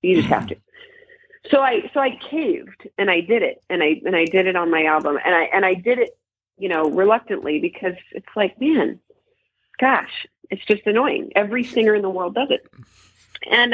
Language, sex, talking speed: English, female, 205 wpm